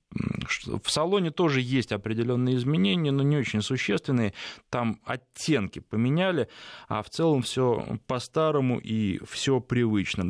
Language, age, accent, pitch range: Russian, 20-39, native, 105-135 Hz